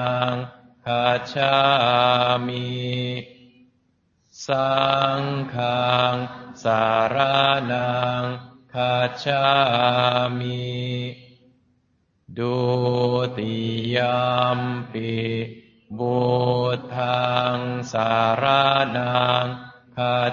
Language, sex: Chinese, male